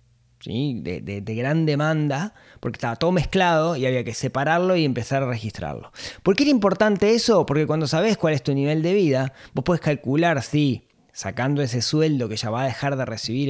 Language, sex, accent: Spanish, male, Argentinian